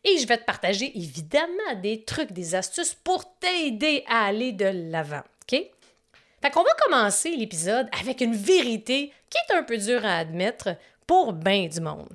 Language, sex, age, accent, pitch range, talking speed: French, female, 30-49, Canadian, 210-295 Hz, 180 wpm